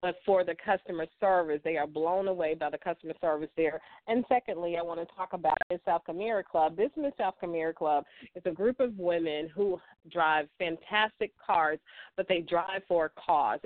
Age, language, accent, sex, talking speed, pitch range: 40-59, English, American, female, 200 wpm, 160-195 Hz